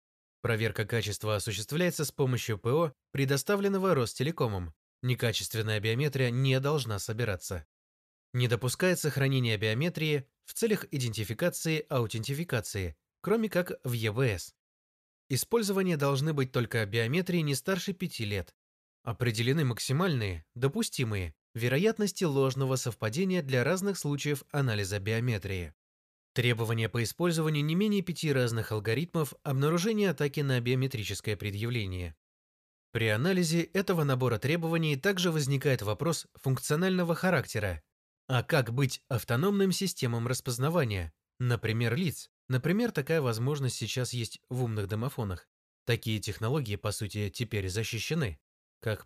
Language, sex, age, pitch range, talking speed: Russian, male, 20-39, 110-155 Hz, 110 wpm